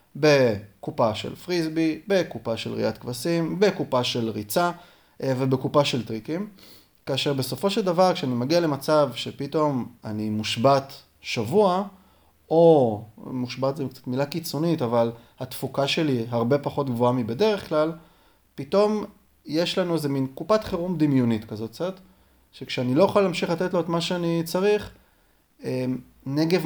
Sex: male